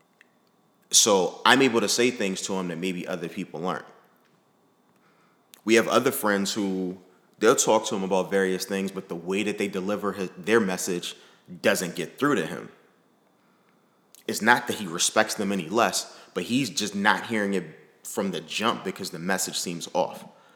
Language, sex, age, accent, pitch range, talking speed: English, male, 30-49, American, 90-100 Hz, 175 wpm